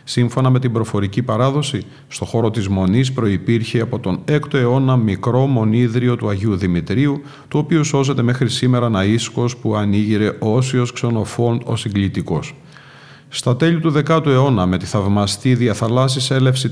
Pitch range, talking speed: 110-135 Hz, 145 wpm